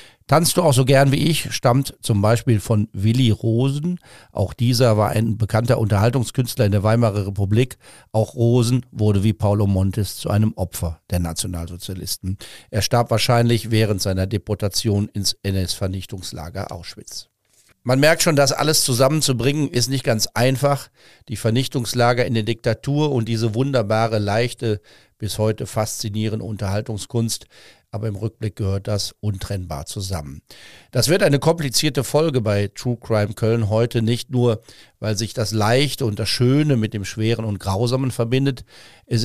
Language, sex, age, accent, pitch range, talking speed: German, male, 50-69, German, 105-125 Hz, 150 wpm